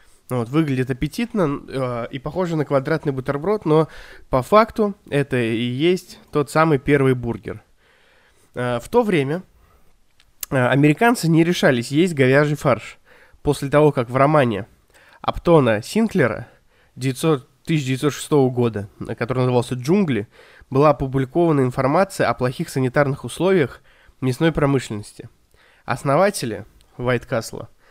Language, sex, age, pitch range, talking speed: Russian, male, 20-39, 125-155 Hz, 110 wpm